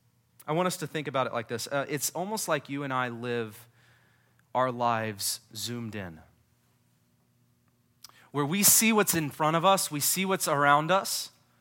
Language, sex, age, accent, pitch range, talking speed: English, male, 30-49, American, 120-160 Hz, 175 wpm